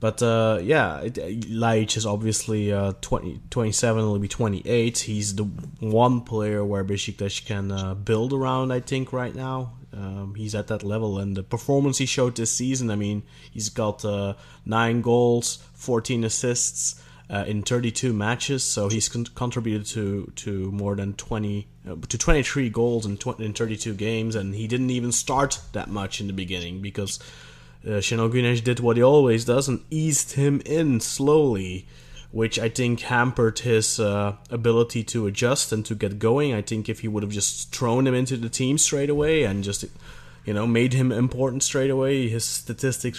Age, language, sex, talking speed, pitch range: 20-39, English, male, 190 wpm, 100-125 Hz